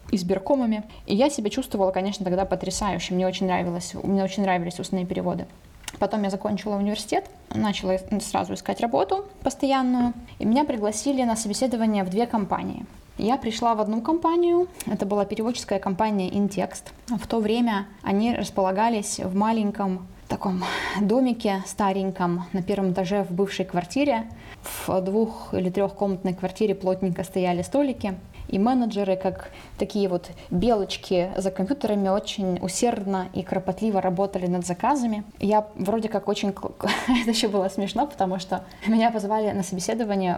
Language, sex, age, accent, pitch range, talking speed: Ukrainian, female, 20-39, native, 190-225 Hz, 145 wpm